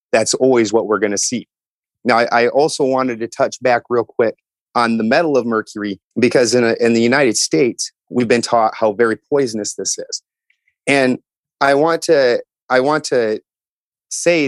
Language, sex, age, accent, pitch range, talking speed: English, male, 30-49, American, 115-150 Hz, 175 wpm